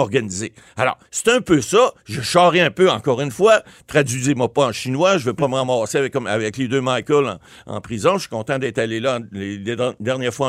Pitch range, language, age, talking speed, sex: 120-200 Hz, French, 60-79, 235 wpm, male